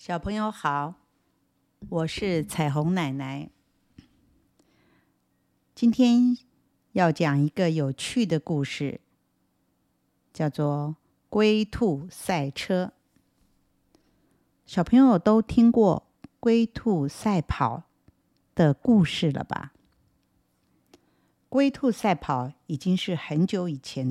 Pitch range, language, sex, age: 155-235 Hz, Chinese, female, 50-69